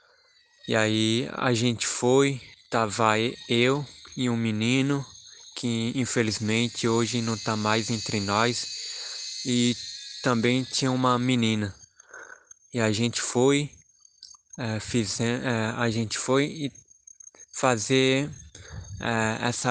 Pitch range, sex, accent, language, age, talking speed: 115-130 Hz, male, Brazilian, Portuguese, 20-39, 115 wpm